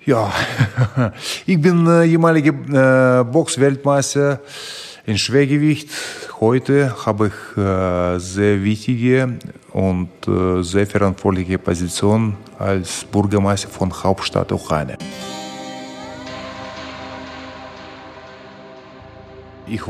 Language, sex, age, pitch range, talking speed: German, male, 30-49, 95-120 Hz, 80 wpm